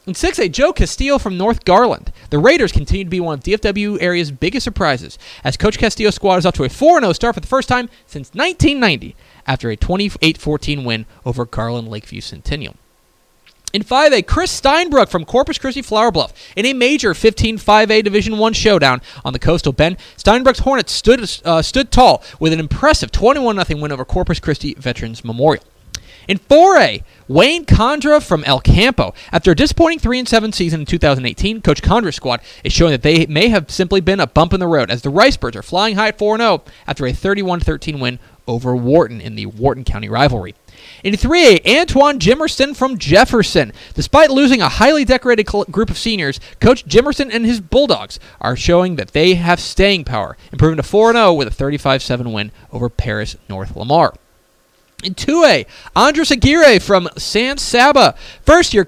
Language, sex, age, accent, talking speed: English, male, 30-49, American, 180 wpm